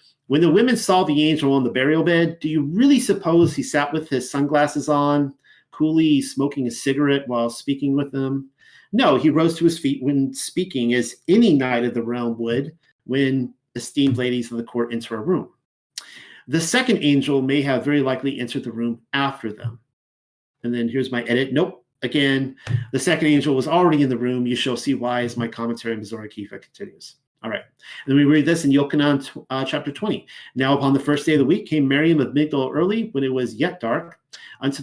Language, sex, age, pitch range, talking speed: English, male, 40-59, 125-150 Hz, 205 wpm